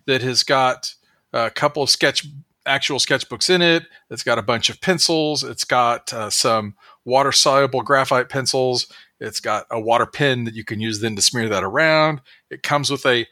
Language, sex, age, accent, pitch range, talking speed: English, male, 40-59, American, 115-150 Hz, 185 wpm